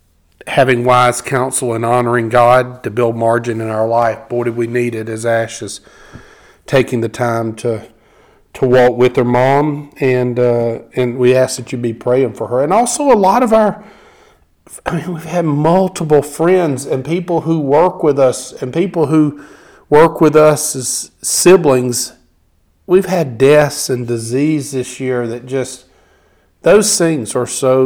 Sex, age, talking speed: male, 50-69, 170 wpm